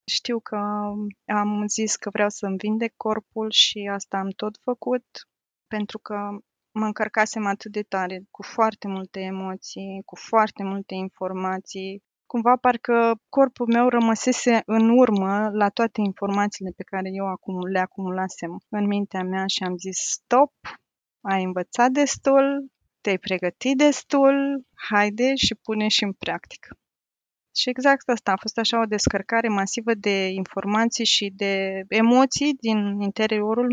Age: 20-39